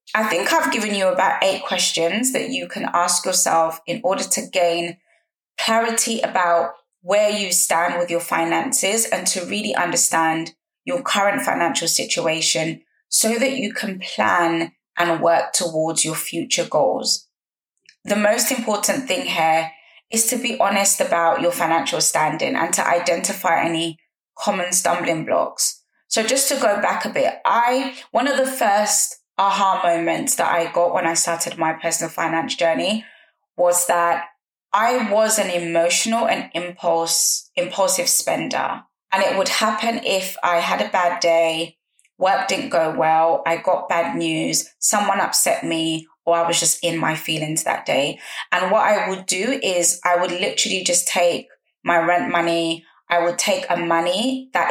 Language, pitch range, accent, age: English, 165-205 Hz, British, 20-39